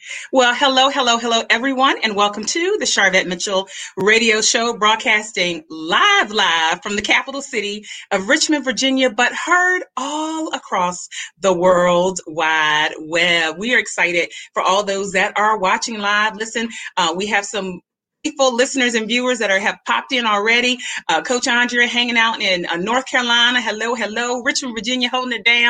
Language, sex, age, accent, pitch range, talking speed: English, female, 30-49, American, 180-250 Hz, 170 wpm